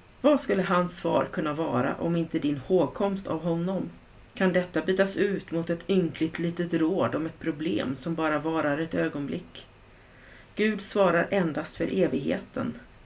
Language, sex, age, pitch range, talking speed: Swedish, female, 30-49, 145-185 Hz, 155 wpm